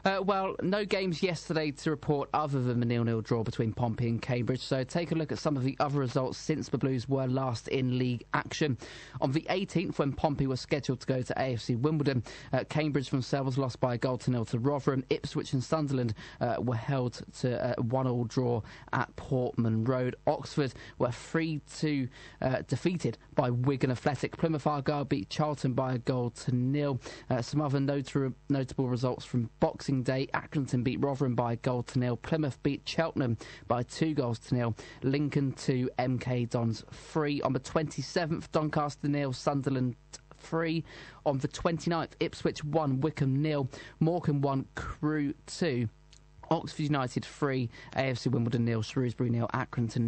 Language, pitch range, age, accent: English, 125-150 Hz, 20-39, British